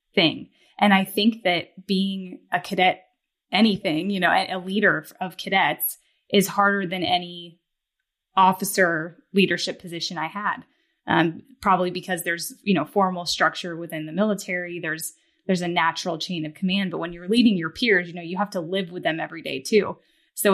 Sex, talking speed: female, 175 wpm